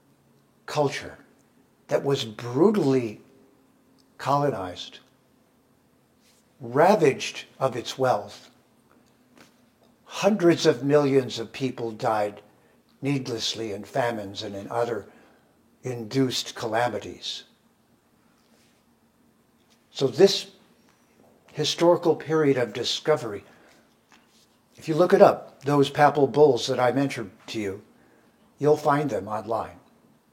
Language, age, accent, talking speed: English, 60-79, American, 90 wpm